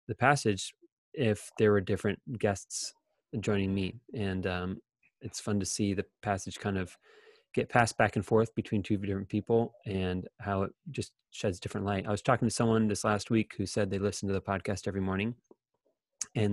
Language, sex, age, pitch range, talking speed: English, male, 30-49, 100-120 Hz, 190 wpm